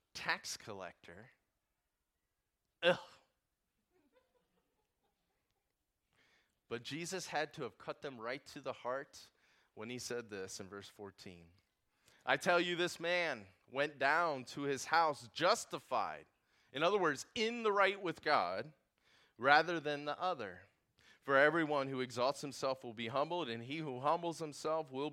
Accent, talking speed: American, 140 wpm